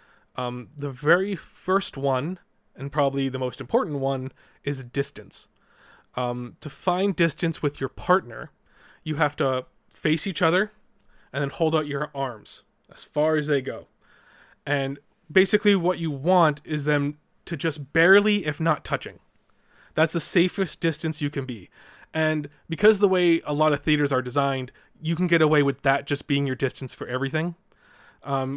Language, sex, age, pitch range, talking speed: English, male, 20-39, 135-165 Hz, 170 wpm